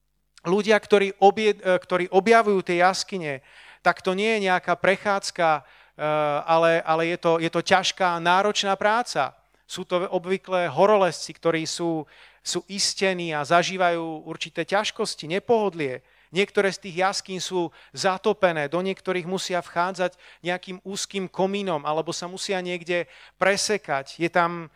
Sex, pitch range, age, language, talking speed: male, 170-205 Hz, 40-59, Slovak, 135 wpm